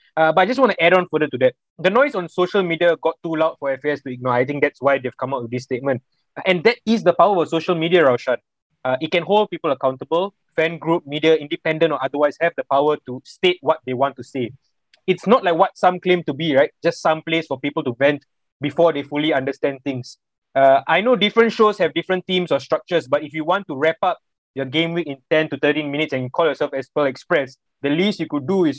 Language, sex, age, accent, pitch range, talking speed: English, male, 20-39, Malaysian, 140-185 Hz, 250 wpm